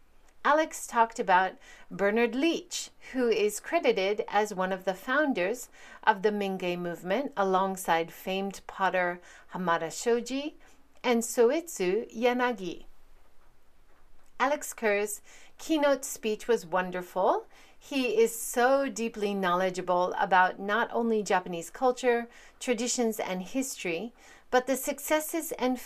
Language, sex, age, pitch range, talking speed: English, female, 40-59, 185-250 Hz, 110 wpm